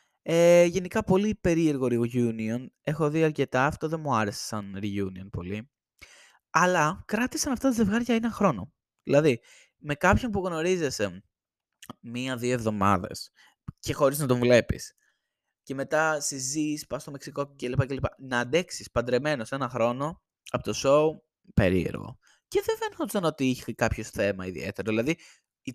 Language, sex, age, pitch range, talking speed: Greek, male, 20-39, 115-170 Hz, 140 wpm